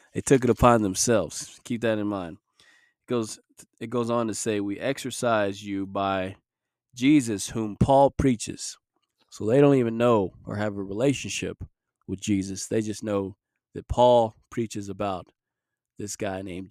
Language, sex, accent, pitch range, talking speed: English, male, American, 100-115 Hz, 160 wpm